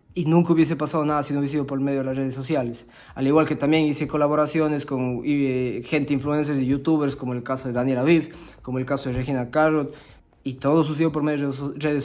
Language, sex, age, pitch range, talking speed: Spanish, male, 20-39, 135-160 Hz, 225 wpm